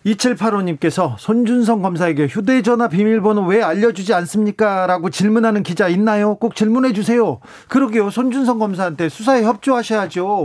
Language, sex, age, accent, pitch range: Korean, male, 40-59, native, 145-220 Hz